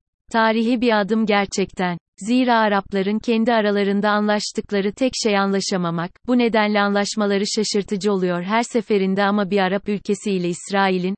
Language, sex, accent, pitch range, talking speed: Turkish, female, native, 190-220 Hz, 135 wpm